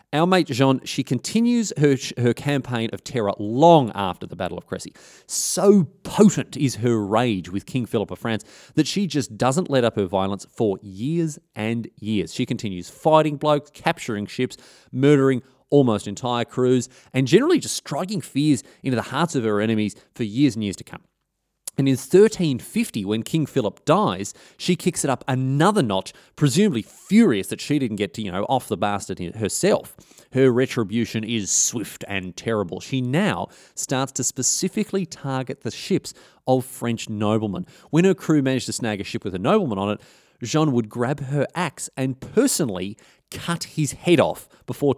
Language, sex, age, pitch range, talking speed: English, male, 30-49, 110-155 Hz, 175 wpm